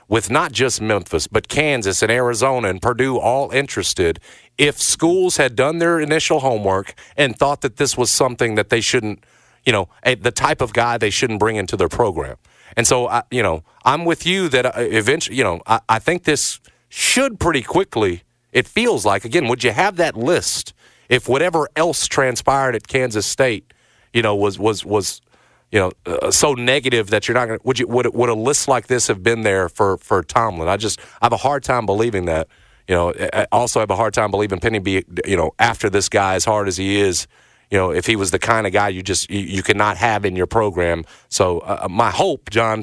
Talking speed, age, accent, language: 225 wpm, 40-59, American, English